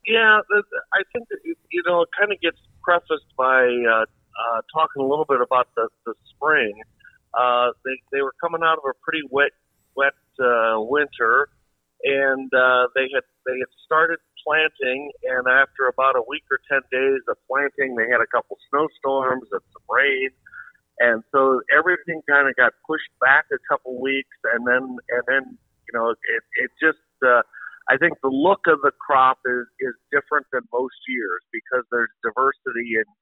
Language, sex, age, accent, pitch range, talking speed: English, male, 50-69, American, 120-170 Hz, 180 wpm